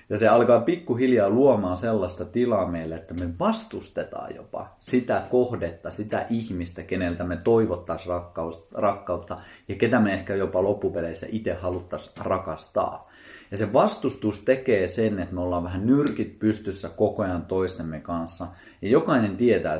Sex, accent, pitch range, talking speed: male, native, 90-115 Hz, 140 wpm